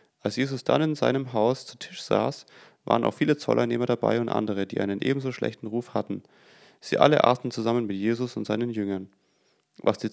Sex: male